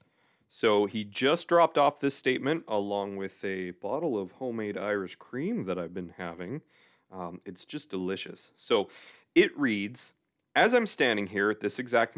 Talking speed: 165 wpm